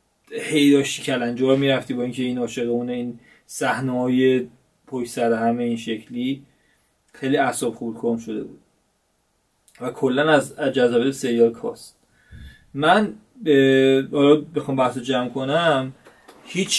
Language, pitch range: Persian, 120-145 Hz